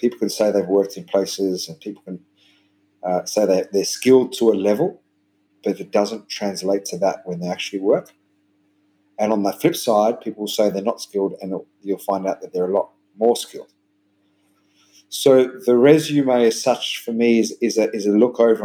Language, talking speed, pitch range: English, 205 wpm, 100-115 Hz